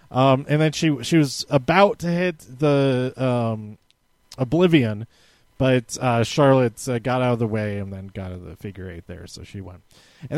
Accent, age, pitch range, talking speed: American, 30-49, 115-155 Hz, 190 wpm